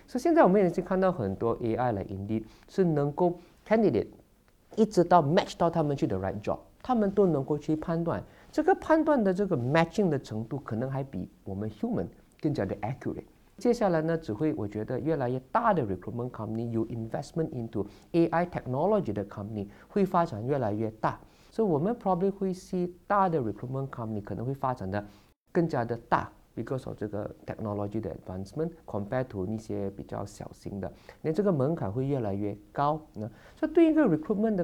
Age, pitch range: 50-69, 115-185 Hz